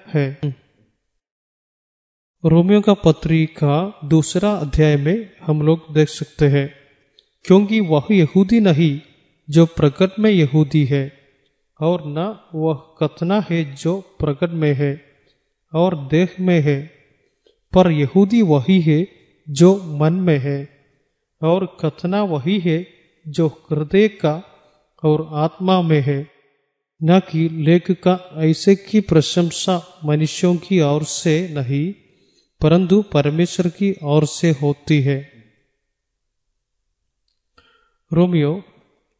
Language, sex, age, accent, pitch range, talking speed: Malayalam, male, 30-49, native, 150-180 Hz, 55 wpm